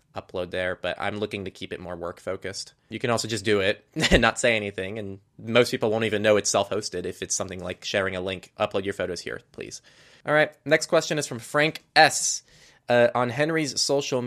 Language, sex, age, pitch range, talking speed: English, male, 20-39, 95-120 Hz, 225 wpm